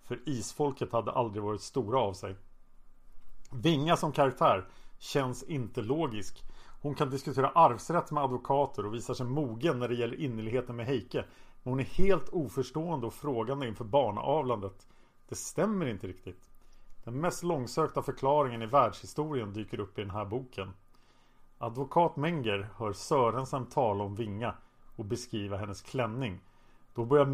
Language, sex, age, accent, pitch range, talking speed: Swedish, male, 40-59, Norwegian, 115-145 Hz, 150 wpm